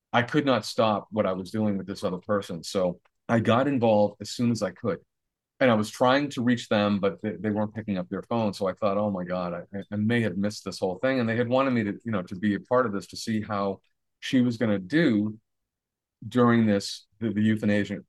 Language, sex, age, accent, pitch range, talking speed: English, male, 40-59, American, 100-120 Hz, 250 wpm